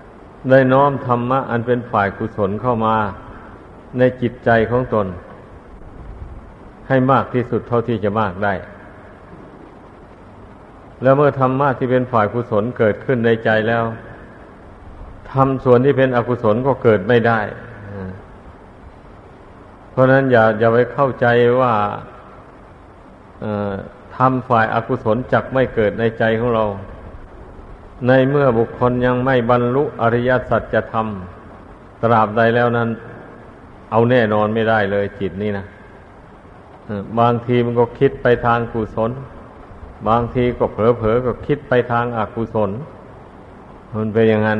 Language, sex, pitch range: Thai, male, 105-125 Hz